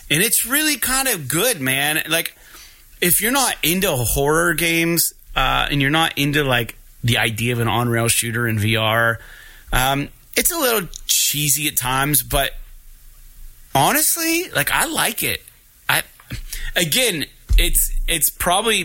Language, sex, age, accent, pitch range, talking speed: English, male, 30-49, American, 115-155 Hz, 145 wpm